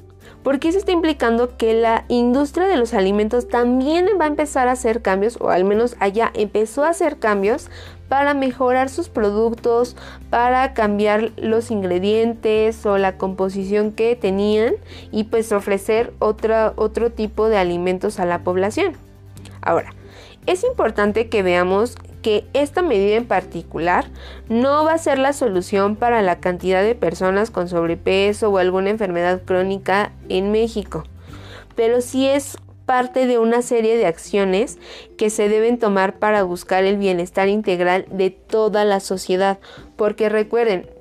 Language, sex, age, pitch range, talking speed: Spanish, female, 20-39, 190-235 Hz, 150 wpm